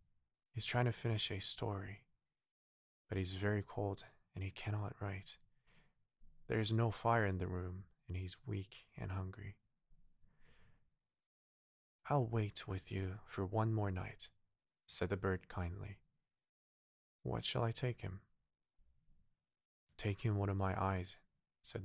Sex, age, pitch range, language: male, 20-39, 95-110 Hz, Korean